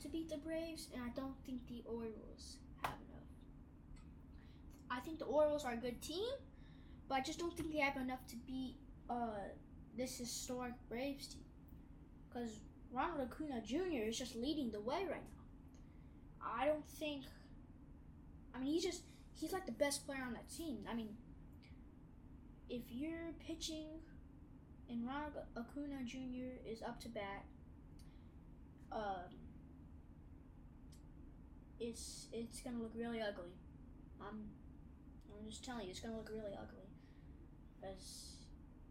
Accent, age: American, 10-29